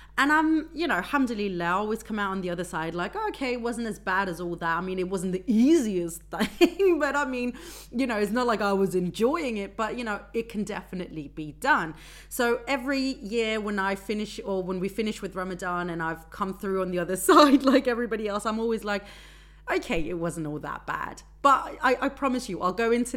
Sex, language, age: female, English, 30-49